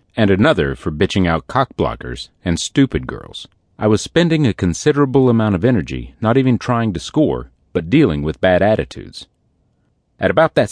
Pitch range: 80-130 Hz